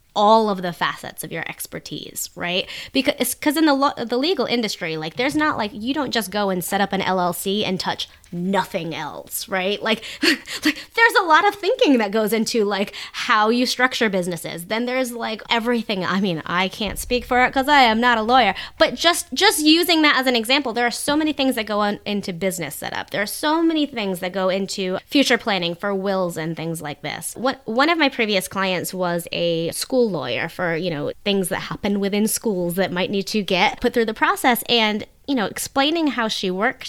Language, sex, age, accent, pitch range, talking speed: English, female, 20-39, American, 190-275 Hz, 220 wpm